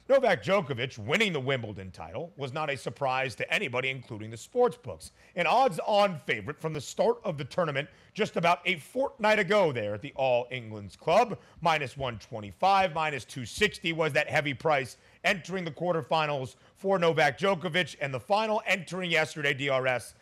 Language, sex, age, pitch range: English, male, 40-59, 130-180 Hz